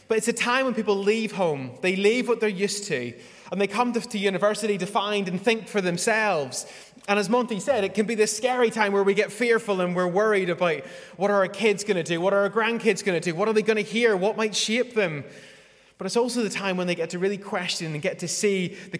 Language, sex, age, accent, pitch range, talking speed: English, male, 20-39, British, 165-215 Hz, 265 wpm